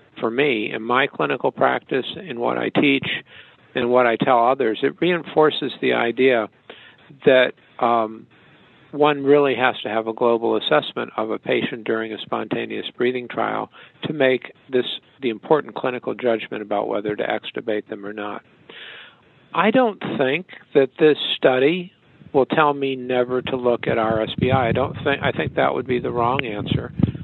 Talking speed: 165 wpm